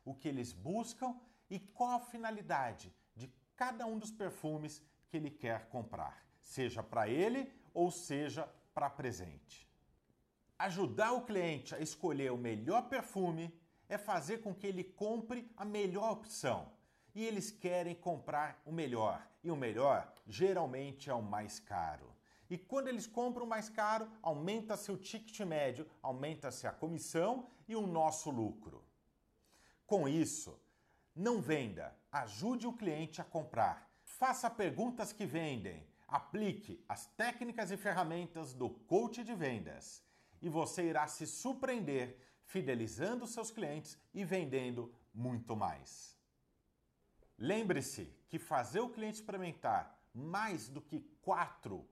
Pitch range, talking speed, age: 135-215 Hz, 135 wpm, 50-69